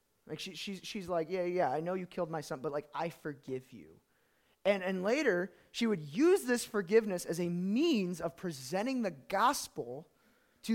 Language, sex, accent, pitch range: English, male, American, 165-230 Hz